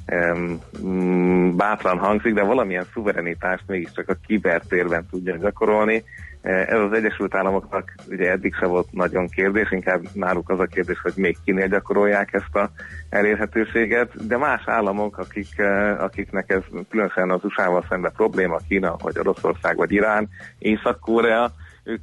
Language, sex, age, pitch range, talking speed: Hungarian, male, 30-49, 90-100 Hz, 135 wpm